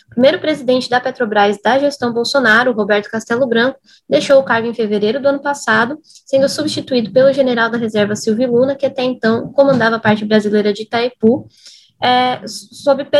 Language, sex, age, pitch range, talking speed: Portuguese, female, 10-29, 215-275 Hz, 170 wpm